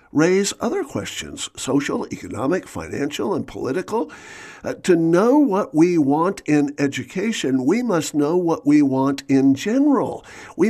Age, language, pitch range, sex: 50-69, English, 130-175 Hz, male